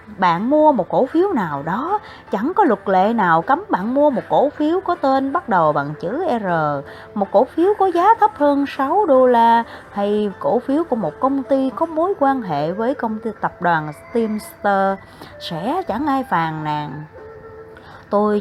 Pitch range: 210-300 Hz